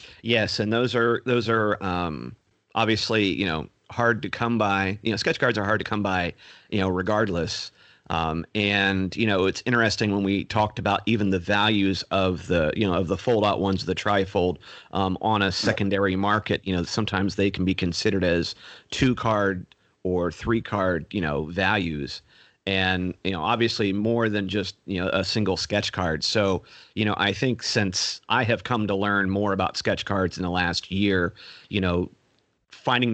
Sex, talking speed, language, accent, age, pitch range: male, 190 wpm, English, American, 40-59, 95-110 Hz